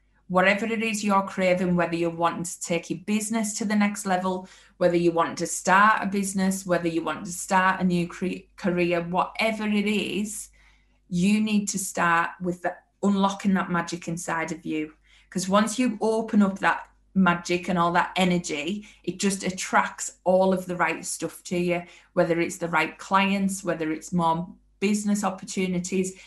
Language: English